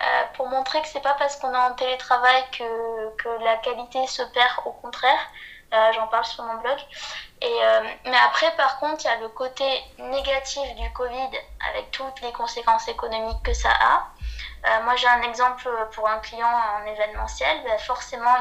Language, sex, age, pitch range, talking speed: French, female, 20-39, 235-270 Hz, 190 wpm